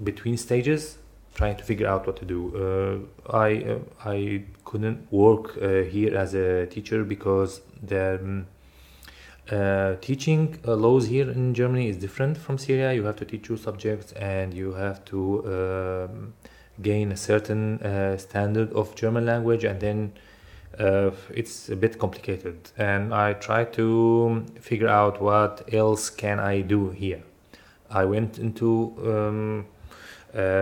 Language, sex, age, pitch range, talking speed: English, male, 20-39, 100-115 Hz, 150 wpm